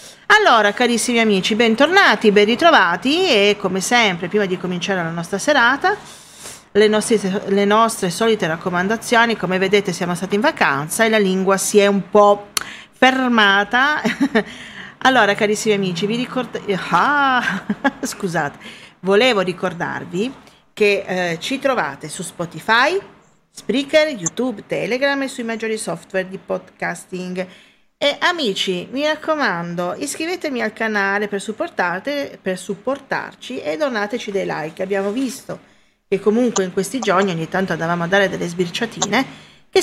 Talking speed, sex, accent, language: 135 wpm, female, native, Italian